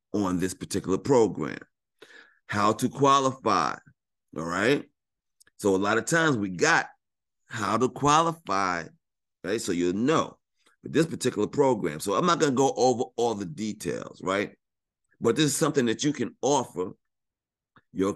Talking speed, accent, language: 150 wpm, American, English